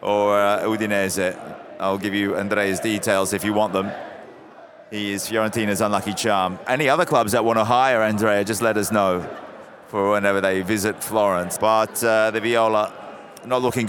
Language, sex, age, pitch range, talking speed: English, male, 30-49, 105-125 Hz, 175 wpm